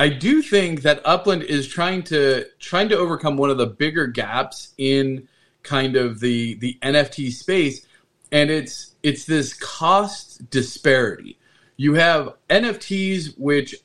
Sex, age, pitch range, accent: male, 30-49, 130-170 Hz, American